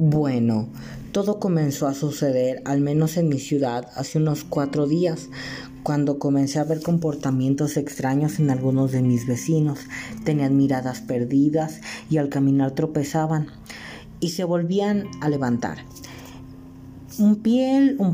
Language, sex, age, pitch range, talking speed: Spanish, female, 40-59, 140-170 Hz, 130 wpm